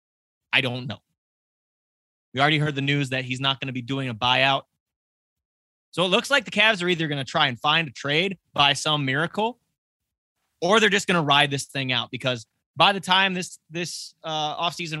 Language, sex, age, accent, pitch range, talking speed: English, male, 20-39, American, 125-155 Hz, 210 wpm